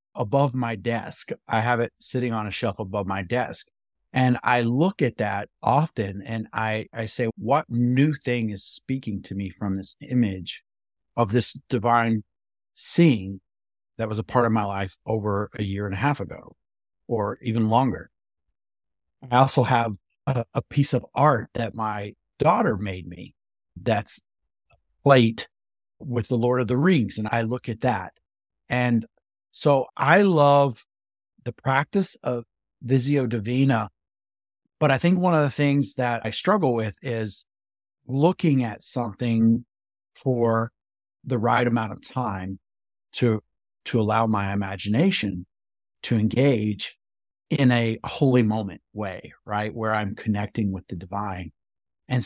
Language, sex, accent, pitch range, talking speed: English, male, American, 100-130 Hz, 150 wpm